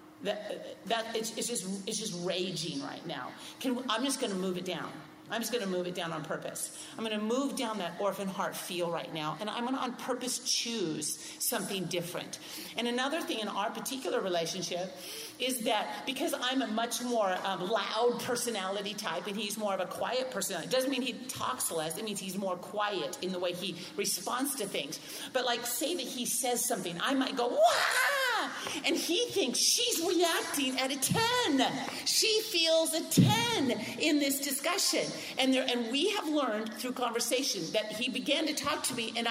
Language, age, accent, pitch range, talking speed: English, 40-59, American, 205-270 Hz, 200 wpm